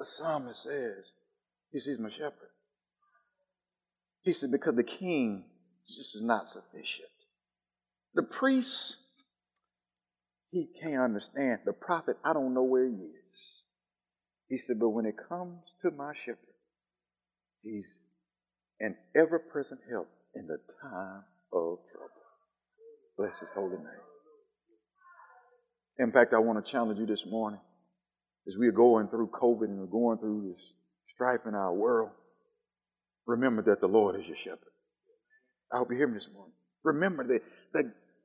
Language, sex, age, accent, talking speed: English, male, 50-69, American, 145 wpm